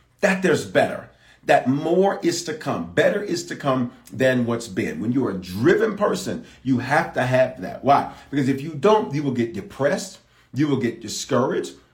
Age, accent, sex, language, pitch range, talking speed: 40-59, American, male, English, 130-185 Hz, 190 wpm